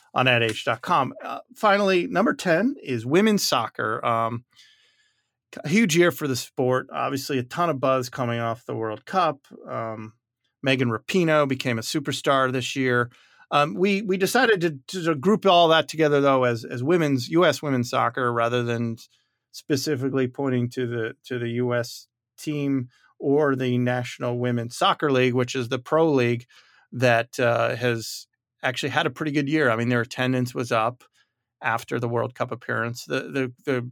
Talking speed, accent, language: 170 wpm, American, English